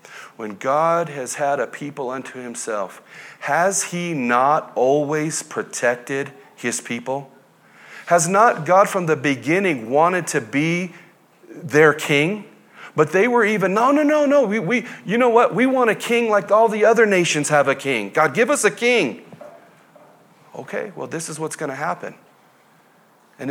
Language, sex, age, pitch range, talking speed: English, male, 40-59, 130-180 Hz, 165 wpm